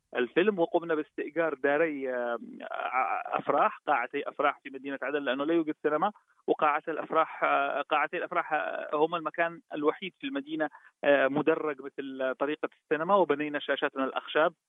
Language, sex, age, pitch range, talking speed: Arabic, male, 30-49, 140-185 Hz, 120 wpm